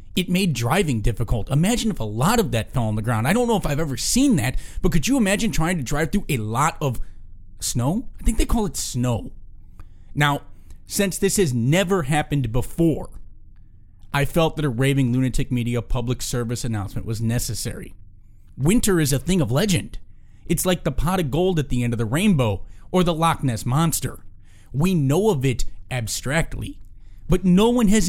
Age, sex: 30-49, male